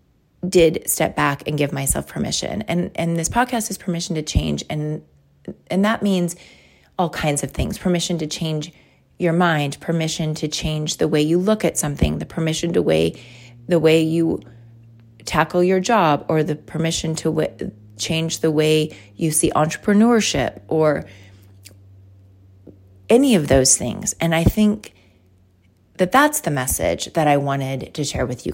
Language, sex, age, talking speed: English, female, 30-49, 160 wpm